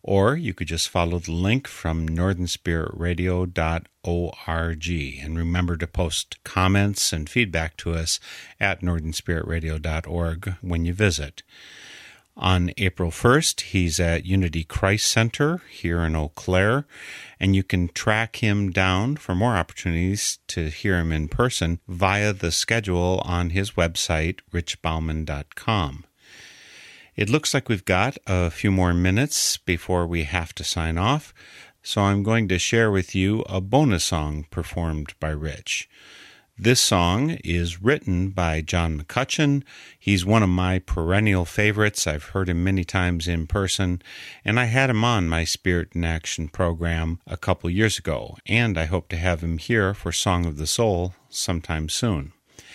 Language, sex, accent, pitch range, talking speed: English, male, American, 85-105 Hz, 150 wpm